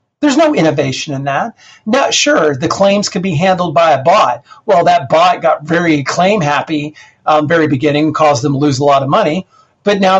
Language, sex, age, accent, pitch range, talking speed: English, male, 50-69, American, 150-210 Hz, 200 wpm